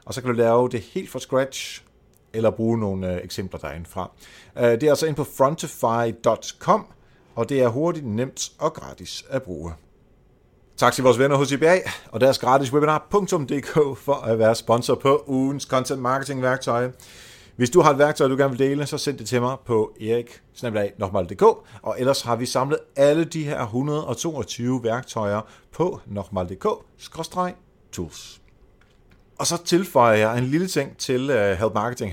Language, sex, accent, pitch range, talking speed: Danish, male, native, 110-145 Hz, 160 wpm